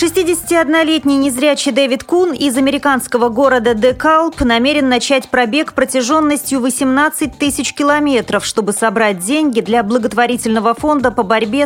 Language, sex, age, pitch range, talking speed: Russian, female, 30-49, 200-260 Hz, 120 wpm